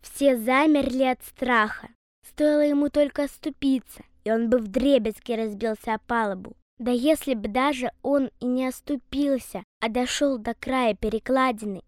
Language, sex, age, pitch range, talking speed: Russian, female, 20-39, 235-300 Hz, 140 wpm